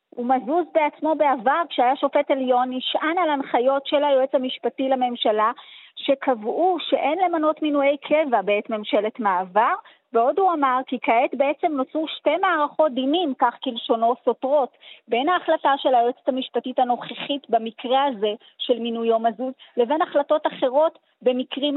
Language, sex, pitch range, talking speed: Hebrew, female, 250-315 Hz, 140 wpm